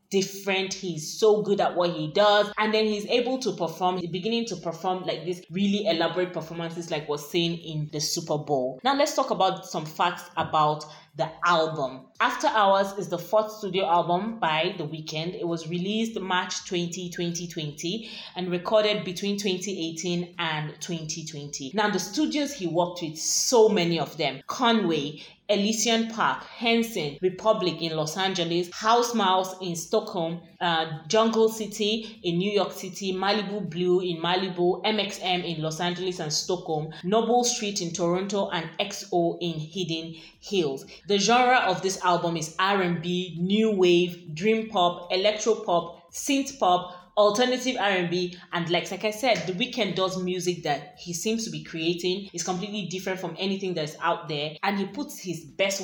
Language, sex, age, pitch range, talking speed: English, female, 20-39, 170-210 Hz, 165 wpm